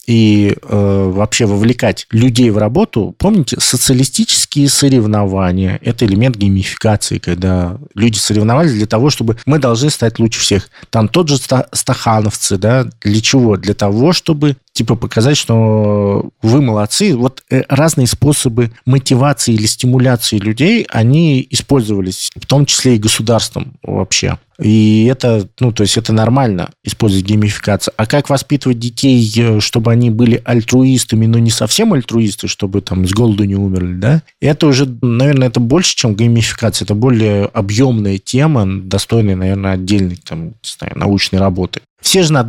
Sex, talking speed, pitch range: male, 145 wpm, 105-130 Hz